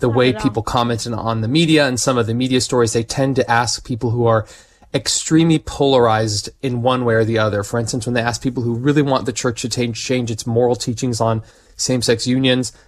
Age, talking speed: 20-39, 220 wpm